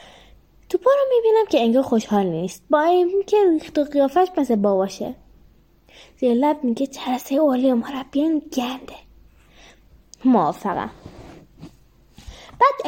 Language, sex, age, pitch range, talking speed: Persian, female, 10-29, 220-350 Hz, 120 wpm